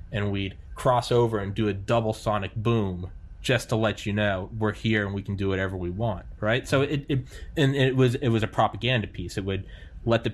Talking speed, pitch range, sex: 210 wpm, 90-115 Hz, male